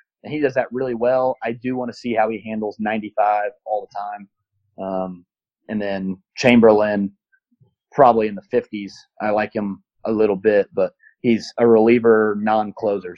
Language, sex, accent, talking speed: English, male, American, 170 wpm